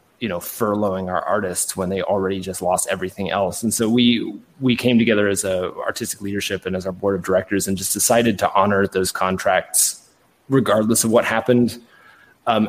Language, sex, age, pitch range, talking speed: English, male, 30-49, 95-115 Hz, 190 wpm